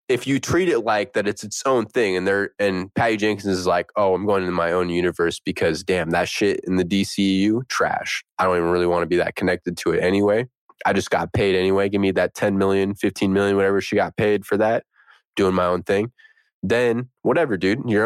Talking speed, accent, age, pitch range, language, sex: 230 wpm, American, 20-39, 95-115 Hz, English, male